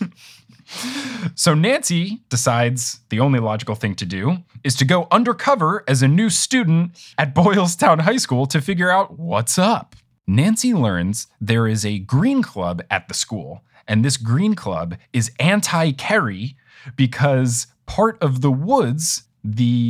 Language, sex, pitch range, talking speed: English, male, 115-175 Hz, 150 wpm